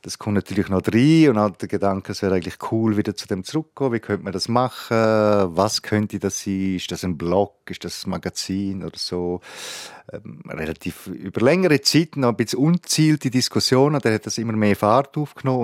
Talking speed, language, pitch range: 205 wpm, German, 90-115 Hz